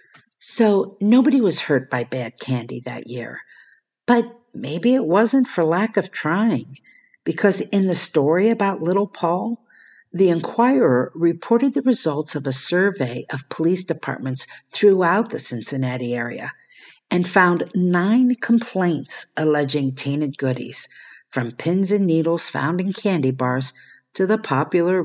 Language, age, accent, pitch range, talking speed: English, 50-69, American, 140-200 Hz, 135 wpm